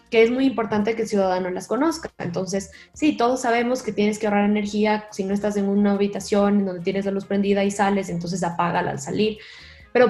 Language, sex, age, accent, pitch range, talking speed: English, female, 20-39, Mexican, 195-225 Hz, 215 wpm